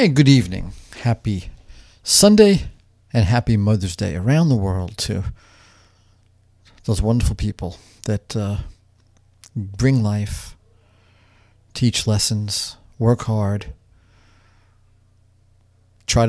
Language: English